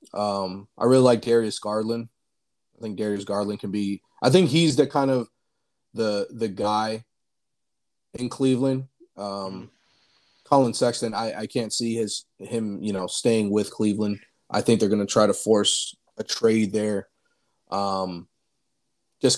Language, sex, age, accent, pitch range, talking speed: English, male, 30-49, American, 100-115 Hz, 155 wpm